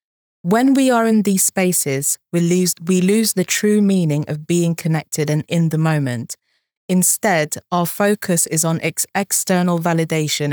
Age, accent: 20-39, British